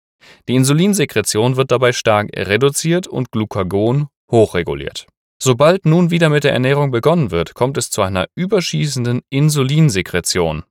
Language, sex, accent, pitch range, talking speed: German, male, German, 100-140 Hz, 130 wpm